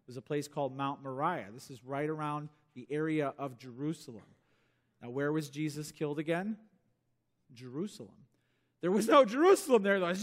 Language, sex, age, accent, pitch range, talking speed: English, male, 40-59, American, 150-230 Hz, 170 wpm